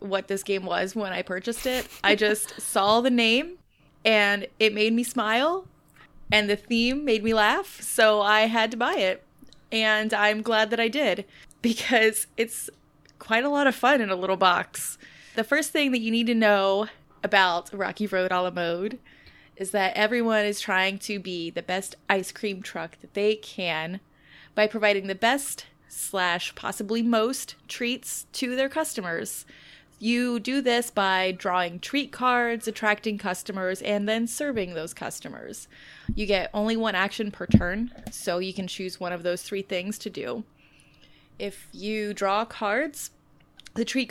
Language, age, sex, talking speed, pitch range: English, 20-39, female, 170 wpm, 190-230 Hz